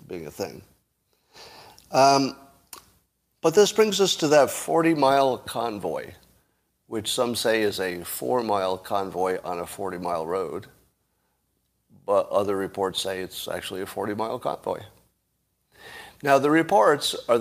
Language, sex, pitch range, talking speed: English, male, 100-130 Hz, 125 wpm